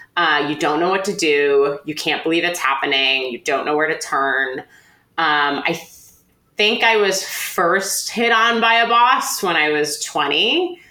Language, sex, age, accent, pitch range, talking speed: English, female, 20-39, American, 150-200 Hz, 185 wpm